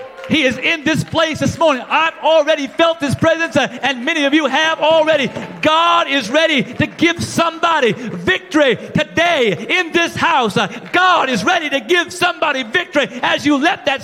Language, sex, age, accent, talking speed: English, male, 40-59, American, 170 wpm